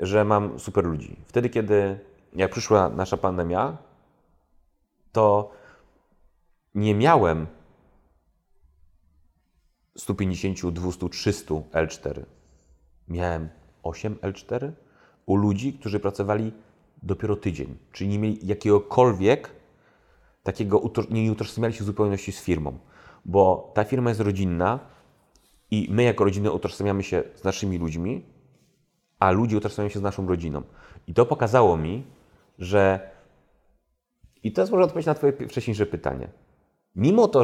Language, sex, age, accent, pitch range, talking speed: Polish, male, 30-49, native, 90-110 Hz, 120 wpm